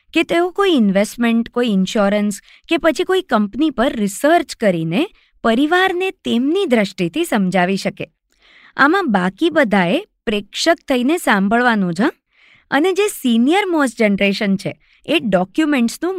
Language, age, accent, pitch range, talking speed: Gujarati, 20-39, native, 195-295 Hz, 120 wpm